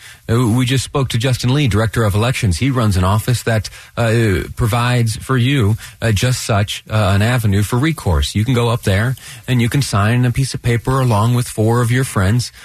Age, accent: 30-49, American